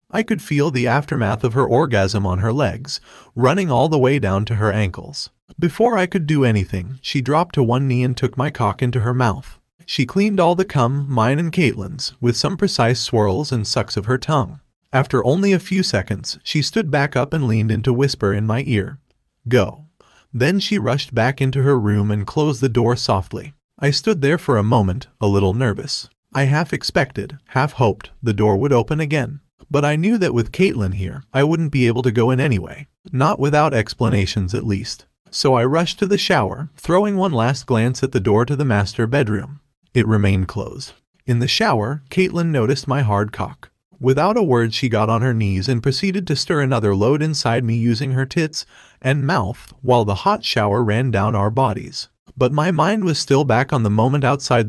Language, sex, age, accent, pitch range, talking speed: English, male, 30-49, American, 115-150 Hz, 205 wpm